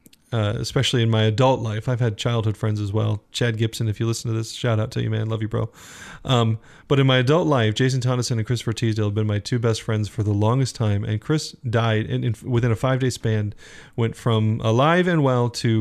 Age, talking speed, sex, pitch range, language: 30-49, 245 wpm, male, 110-135 Hz, English